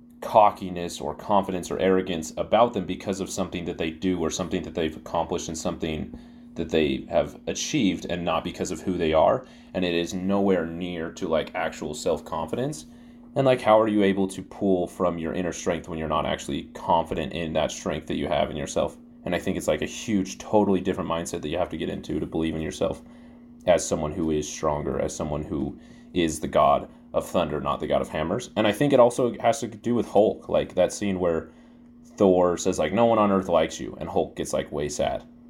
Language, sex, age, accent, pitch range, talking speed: English, male, 30-49, American, 80-115 Hz, 225 wpm